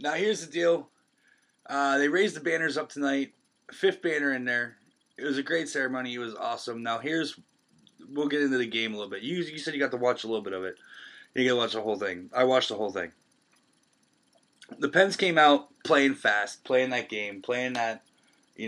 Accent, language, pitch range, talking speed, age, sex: American, English, 110-150 Hz, 220 wpm, 20-39, male